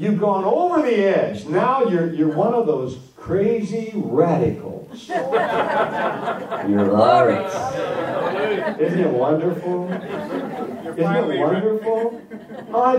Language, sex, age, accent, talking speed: English, male, 60-79, American, 105 wpm